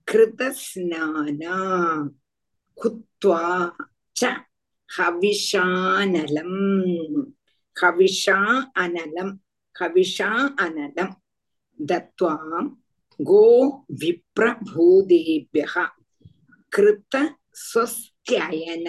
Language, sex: Tamil, female